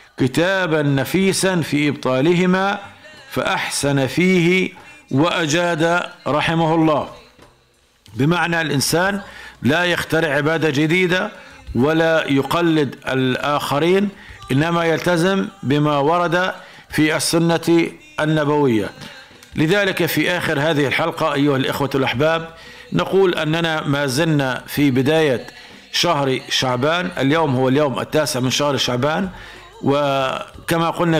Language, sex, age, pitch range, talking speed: Arabic, male, 50-69, 135-165 Hz, 95 wpm